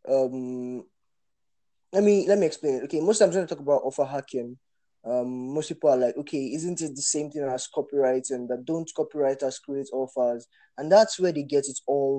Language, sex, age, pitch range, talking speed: English, male, 10-29, 135-180 Hz, 205 wpm